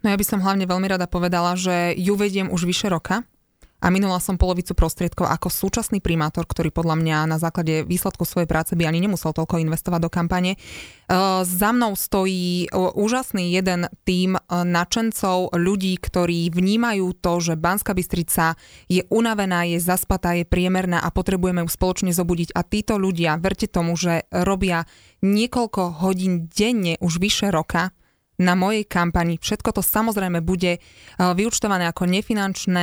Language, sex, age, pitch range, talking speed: Slovak, female, 20-39, 170-195 Hz, 155 wpm